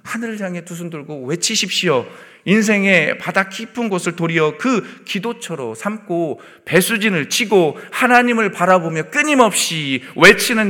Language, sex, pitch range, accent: Korean, male, 135-185 Hz, native